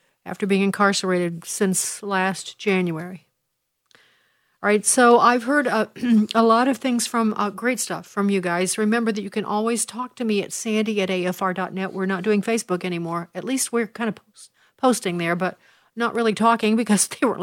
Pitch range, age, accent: 180-225 Hz, 50-69, American